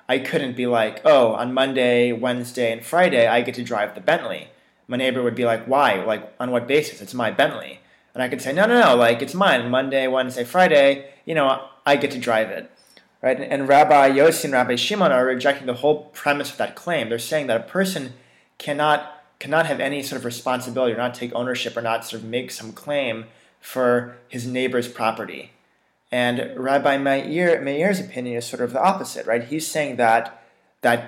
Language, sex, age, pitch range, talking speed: English, male, 20-39, 115-140 Hz, 205 wpm